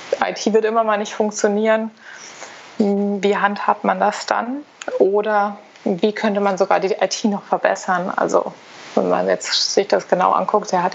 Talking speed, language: 160 wpm, German